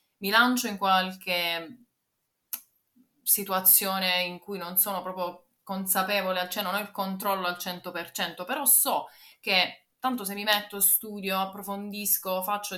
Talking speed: 130 wpm